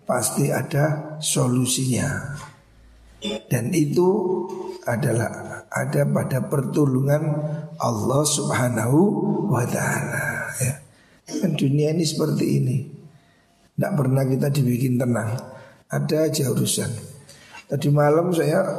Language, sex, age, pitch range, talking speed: Indonesian, male, 60-79, 120-150 Hz, 95 wpm